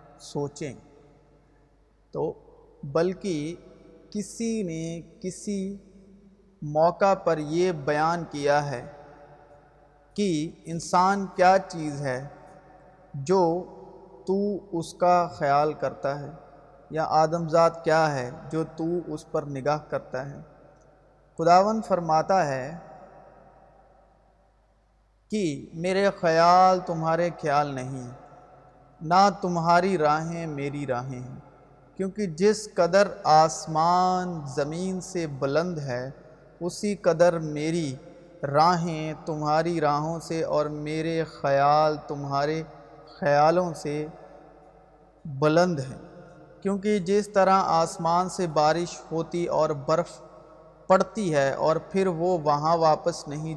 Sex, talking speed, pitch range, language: male, 100 wpm, 150-180 Hz, Urdu